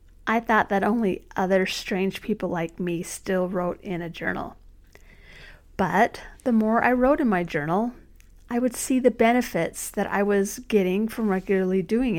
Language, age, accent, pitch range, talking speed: English, 50-69, American, 190-235 Hz, 165 wpm